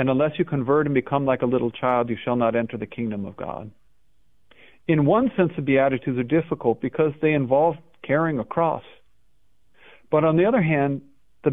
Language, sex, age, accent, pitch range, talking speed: English, male, 50-69, American, 125-155 Hz, 195 wpm